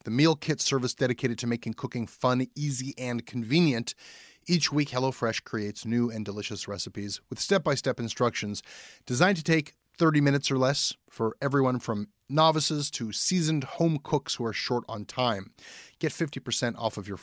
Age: 30-49